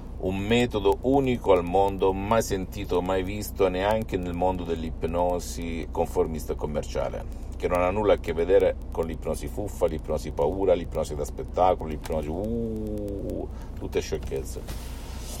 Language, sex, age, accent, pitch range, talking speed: Italian, male, 50-69, native, 85-105 Hz, 130 wpm